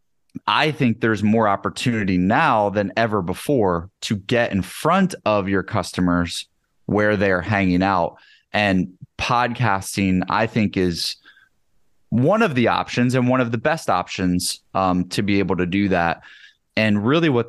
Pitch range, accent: 95-115 Hz, American